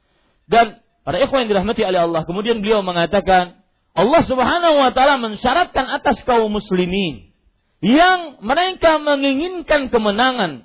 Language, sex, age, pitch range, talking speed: Malay, male, 40-59, 165-270 Hz, 125 wpm